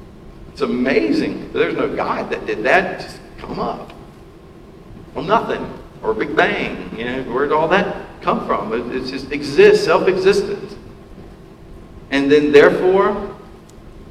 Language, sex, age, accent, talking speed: English, male, 50-69, American, 145 wpm